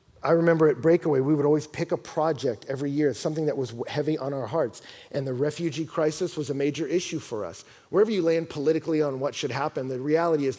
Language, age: English, 40-59